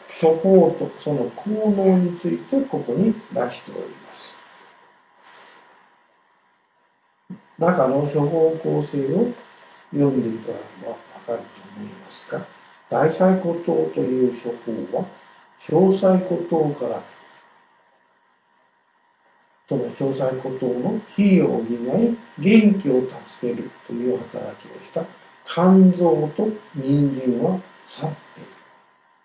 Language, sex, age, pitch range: Japanese, male, 60-79, 130-190 Hz